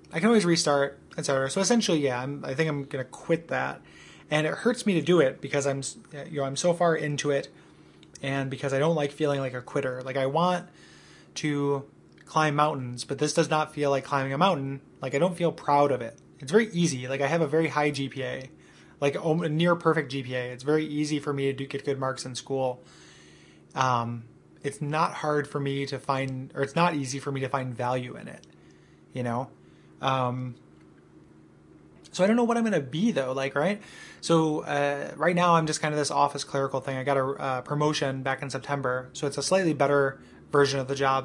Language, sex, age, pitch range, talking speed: English, male, 20-39, 130-160 Hz, 220 wpm